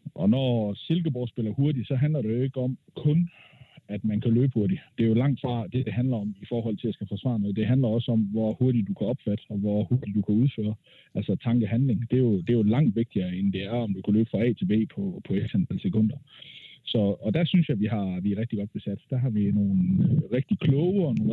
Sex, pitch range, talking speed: male, 110-140 Hz, 265 wpm